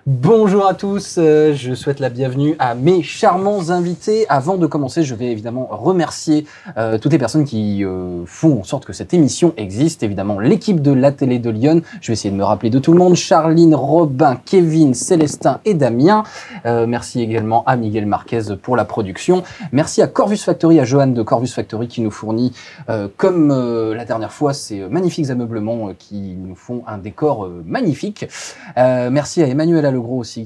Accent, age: French, 20-39